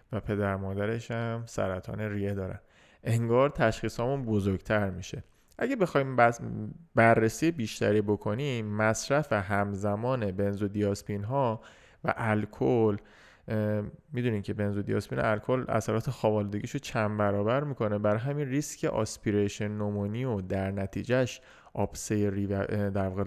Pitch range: 100-130 Hz